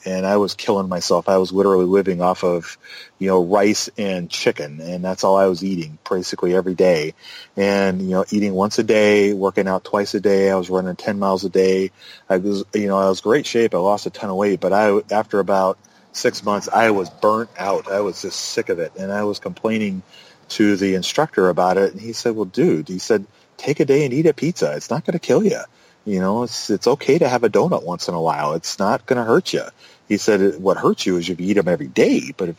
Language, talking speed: English, 250 wpm